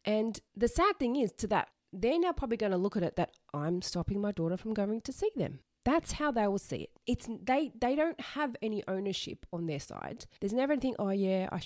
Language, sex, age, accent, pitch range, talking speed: English, female, 30-49, Australian, 165-225 Hz, 240 wpm